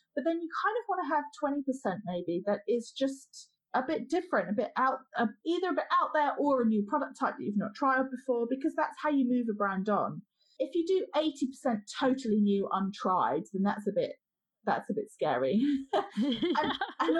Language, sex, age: English, female, 30-49